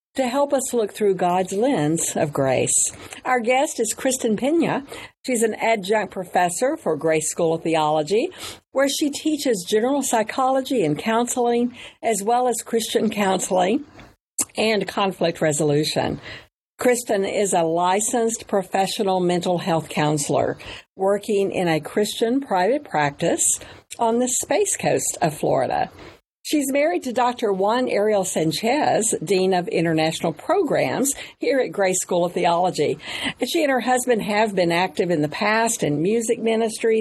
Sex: female